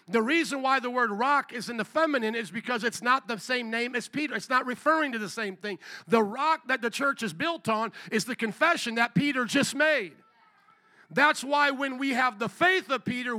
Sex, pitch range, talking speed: male, 245-315 Hz, 225 wpm